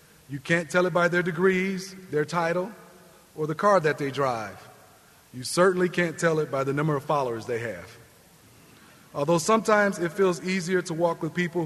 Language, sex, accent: English, male, American